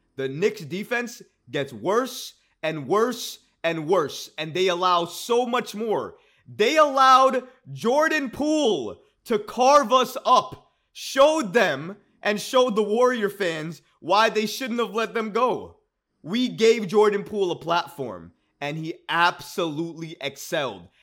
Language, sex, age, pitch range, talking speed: English, male, 20-39, 150-220 Hz, 135 wpm